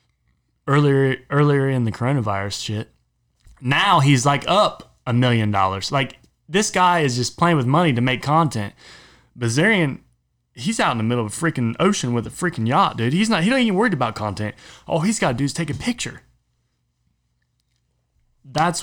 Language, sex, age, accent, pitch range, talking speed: English, male, 20-39, American, 110-145 Hz, 180 wpm